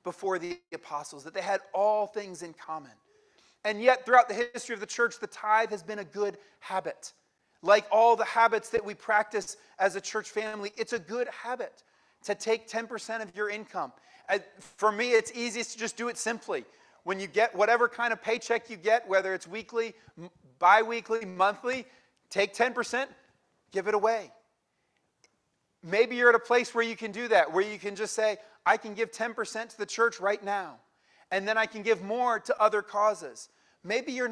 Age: 30-49